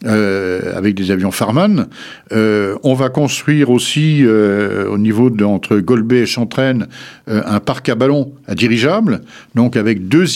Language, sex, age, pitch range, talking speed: French, male, 60-79, 105-140 Hz, 160 wpm